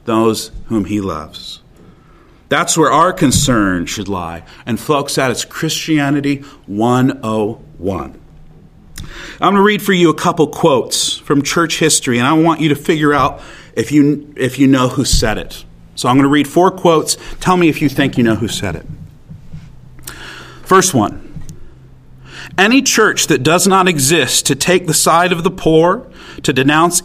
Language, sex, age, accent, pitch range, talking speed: English, male, 40-59, American, 125-175 Hz, 170 wpm